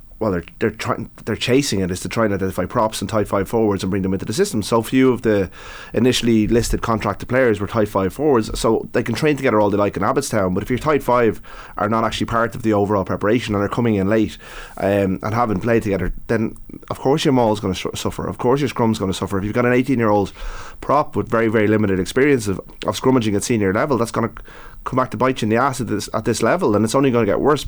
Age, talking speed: 30-49, 275 wpm